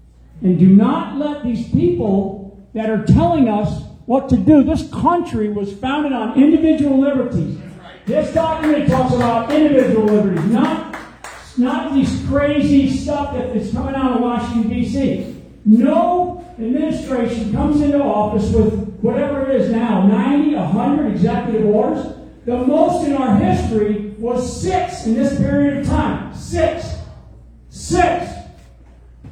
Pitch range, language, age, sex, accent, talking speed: 220-285 Hz, English, 40-59, male, American, 135 wpm